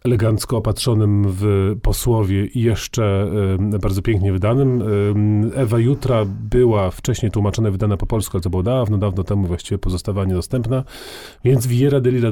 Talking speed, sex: 150 wpm, male